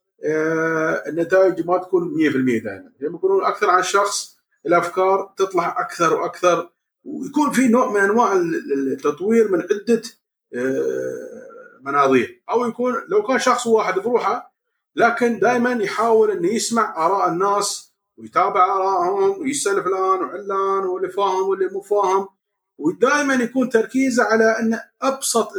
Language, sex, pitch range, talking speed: Arabic, male, 180-290 Hz, 120 wpm